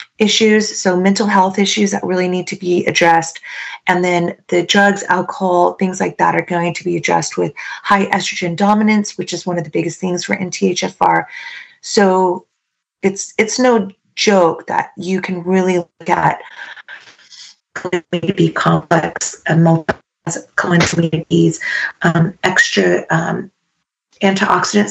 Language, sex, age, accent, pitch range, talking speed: English, female, 30-49, American, 170-195 Hz, 135 wpm